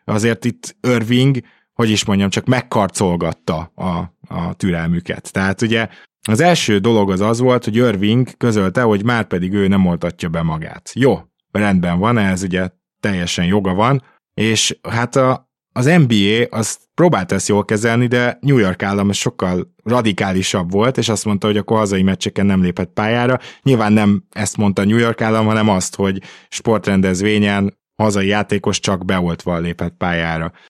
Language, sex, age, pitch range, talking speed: Hungarian, male, 20-39, 95-120 Hz, 160 wpm